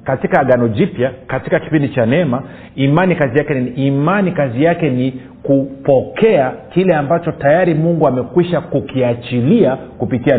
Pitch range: 120-165 Hz